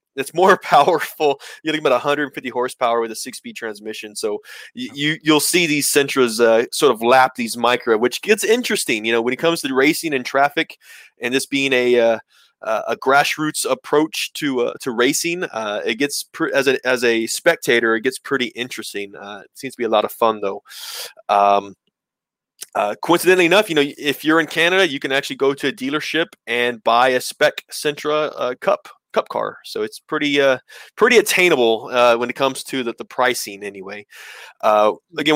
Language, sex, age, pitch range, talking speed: English, male, 20-39, 125-170 Hz, 195 wpm